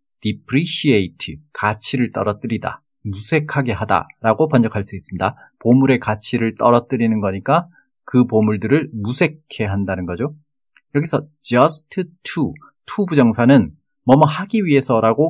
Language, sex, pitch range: Korean, male, 110-150 Hz